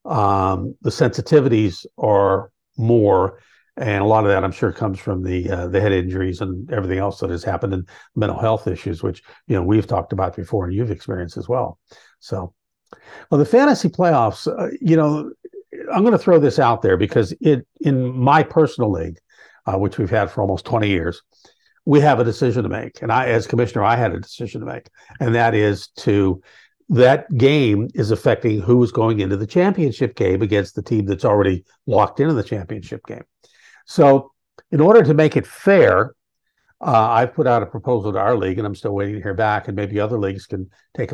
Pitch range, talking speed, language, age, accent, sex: 100-130 Hz, 205 wpm, English, 60-79, American, male